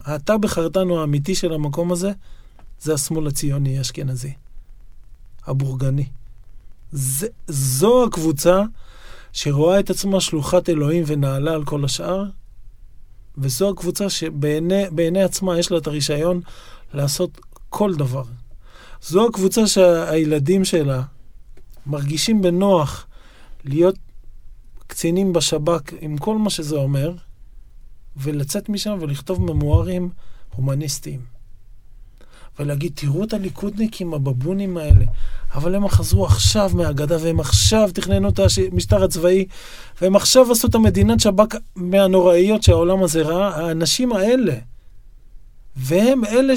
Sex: male